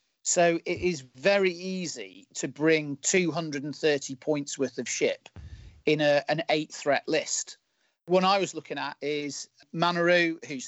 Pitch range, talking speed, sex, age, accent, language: 140-165 Hz, 140 wpm, male, 40-59, British, English